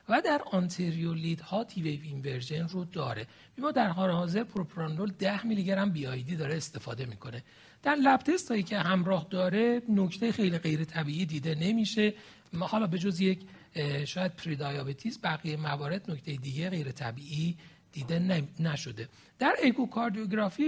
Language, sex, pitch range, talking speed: Persian, male, 155-215 Hz, 145 wpm